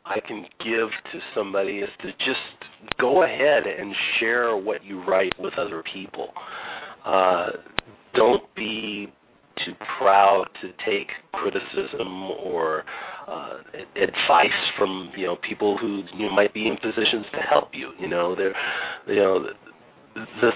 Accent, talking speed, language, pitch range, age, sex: American, 145 wpm, English, 100-130 Hz, 40-59, male